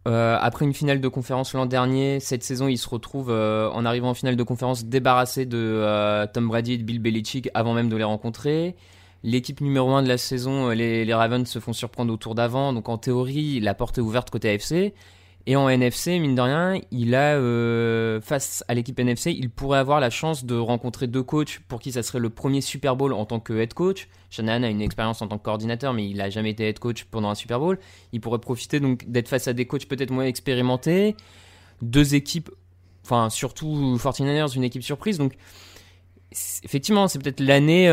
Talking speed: 220 wpm